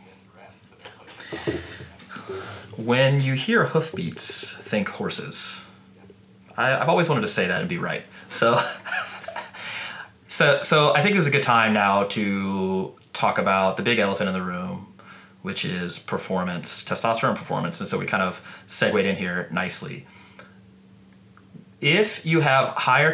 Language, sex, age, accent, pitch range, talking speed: English, male, 30-49, American, 95-130 Hz, 135 wpm